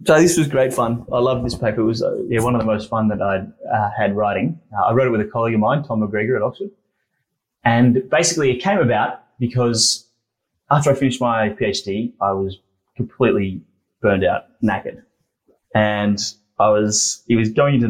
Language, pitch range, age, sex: English, 105-130 Hz, 20-39, male